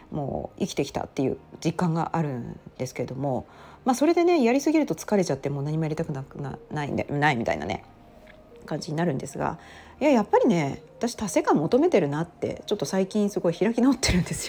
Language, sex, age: Japanese, female, 40-59